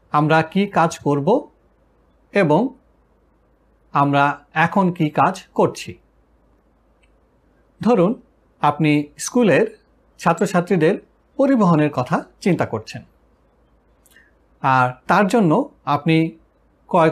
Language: Bengali